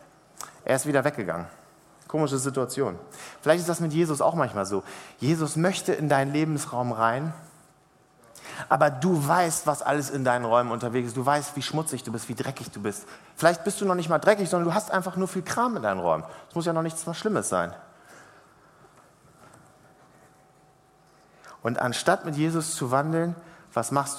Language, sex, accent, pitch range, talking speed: German, male, German, 130-170 Hz, 180 wpm